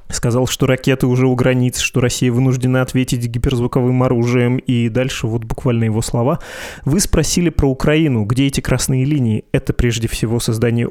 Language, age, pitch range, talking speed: Russian, 20-39, 120-135 Hz, 165 wpm